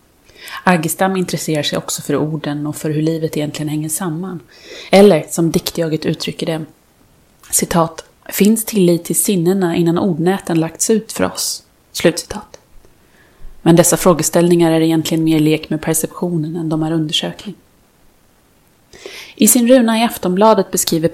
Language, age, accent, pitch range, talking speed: Swedish, 30-49, native, 160-185 Hz, 140 wpm